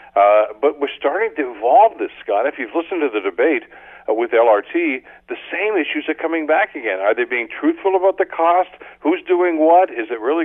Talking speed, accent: 210 wpm, American